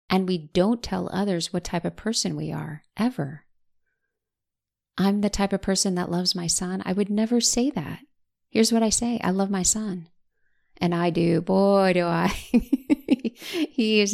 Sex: female